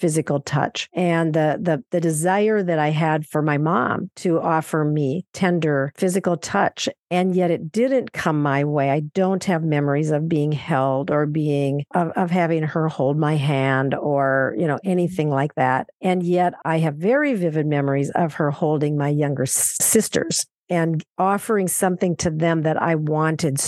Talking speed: 175 wpm